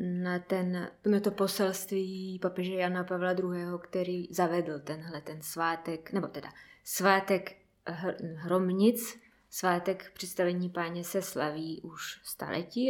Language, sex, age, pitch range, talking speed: Czech, female, 20-39, 175-195 Hz, 115 wpm